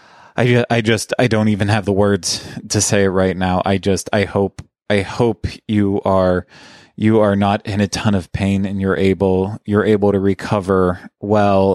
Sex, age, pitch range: male, 20-39, 95-105 Hz